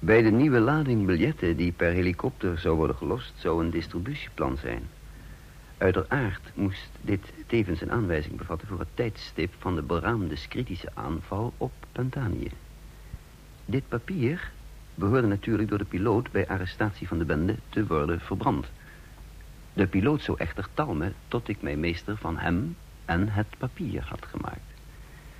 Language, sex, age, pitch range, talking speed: Dutch, male, 60-79, 85-110 Hz, 150 wpm